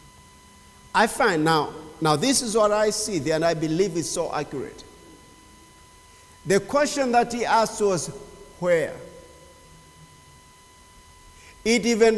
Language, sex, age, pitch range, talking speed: English, male, 50-69, 160-225 Hz, 125 wpm